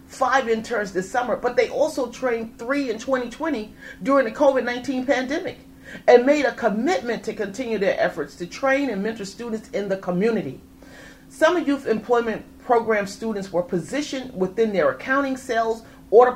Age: 30-49